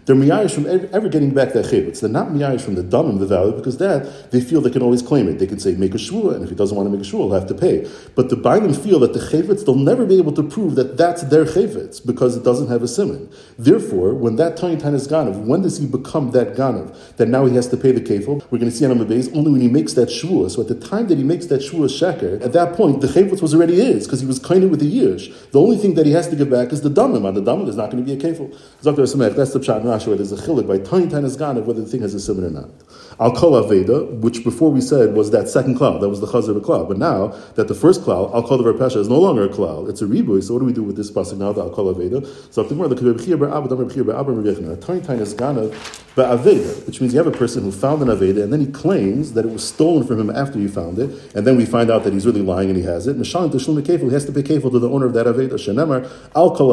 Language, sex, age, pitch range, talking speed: English, male, 40-59, 115-145 Hz, 275 wpm